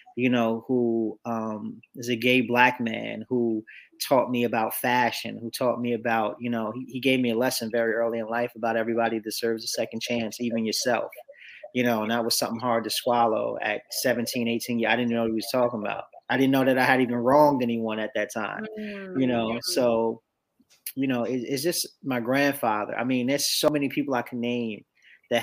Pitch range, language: 115-130 Hz, English